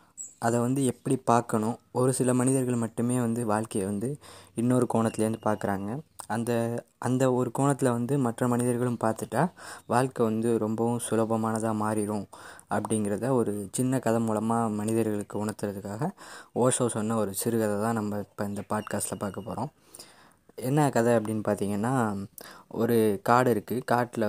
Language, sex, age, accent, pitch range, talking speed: Tamil, female, 20-39, native, 110-125 Hz, 130 wpm